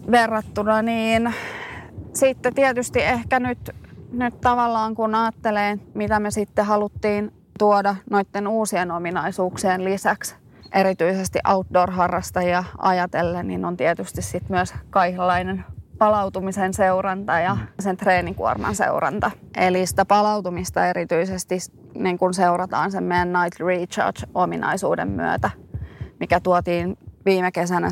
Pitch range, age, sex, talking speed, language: 175-205 Hz, 20-39, female, 110 wpm, Finnish